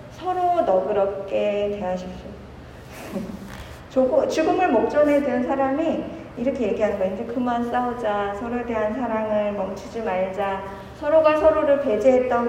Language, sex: Korean, female